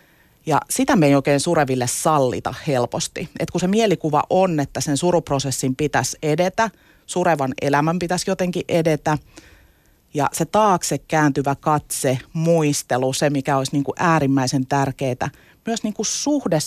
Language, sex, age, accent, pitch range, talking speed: Finnish, female, 30-49, native, 140-175 Hz, 135 wpm